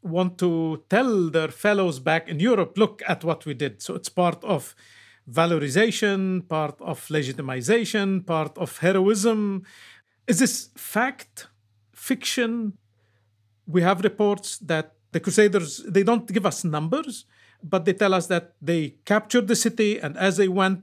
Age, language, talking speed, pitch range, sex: 50-69, English, 150 wpm, 145-205 Hz, male